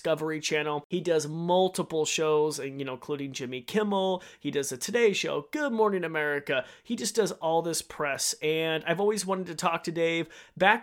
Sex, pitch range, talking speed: male, 145-180 Hz, 195 wpm